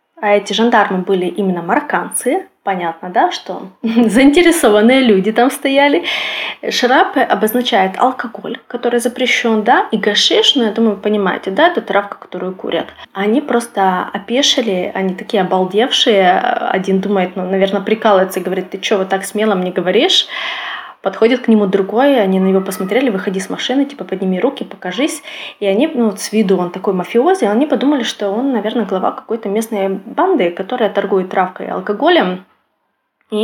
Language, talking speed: Russian, 165 wpm